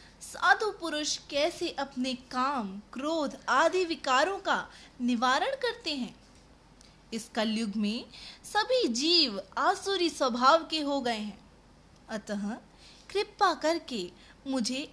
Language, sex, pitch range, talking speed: Hindi, female, 235-340 Hz, 110 wpm